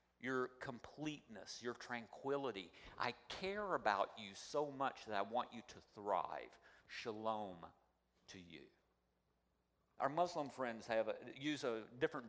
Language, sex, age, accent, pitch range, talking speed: English, male, 50-69, American, 105-145 Hz, 130 wpm